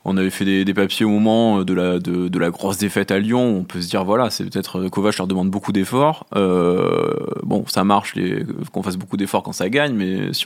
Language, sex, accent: French, male, French